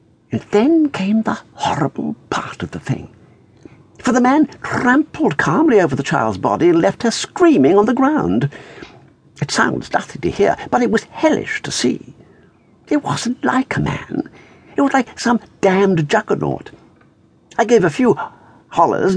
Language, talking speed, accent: English, 165 wpm, British